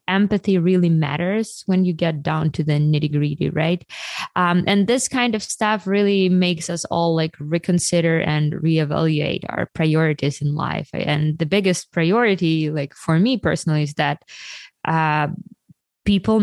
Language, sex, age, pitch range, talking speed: English, female, 20-39, 150-175 Hz, 155 wpm